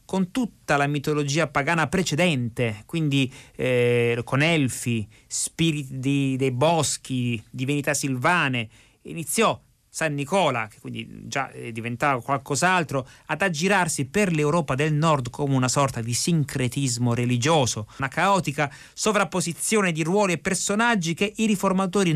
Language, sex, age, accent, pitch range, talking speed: Italian, male, 30-49, native, 130-170 Hz, 120 wpm